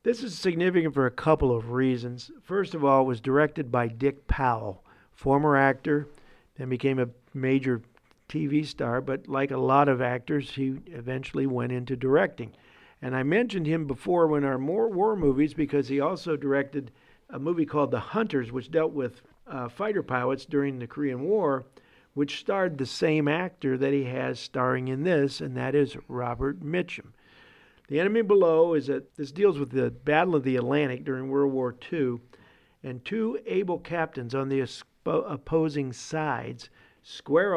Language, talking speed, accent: English, 170 wpm, American